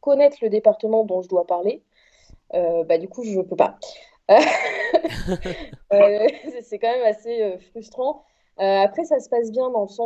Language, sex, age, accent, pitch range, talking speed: French, female, 30-49, French, 195-250 Hz, 175 wpm